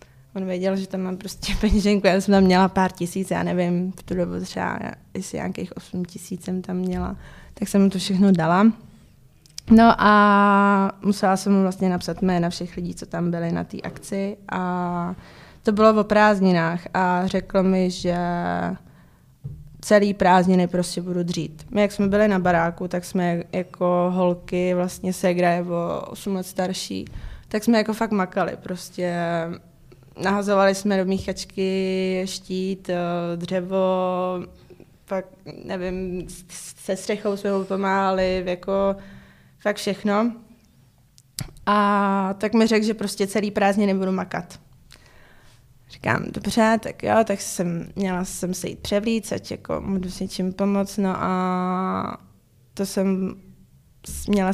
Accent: native